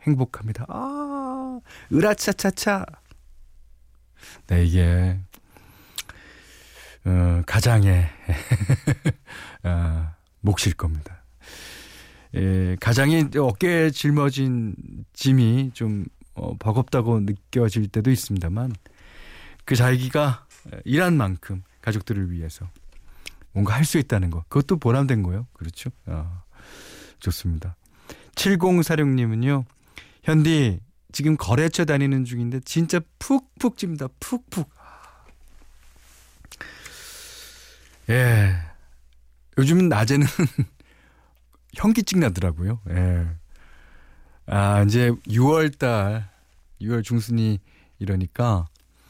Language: Korean